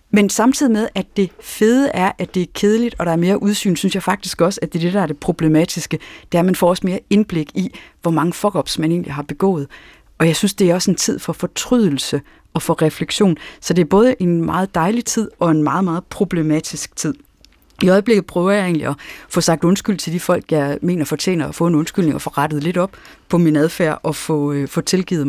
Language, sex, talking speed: Danish, female, 245 wpm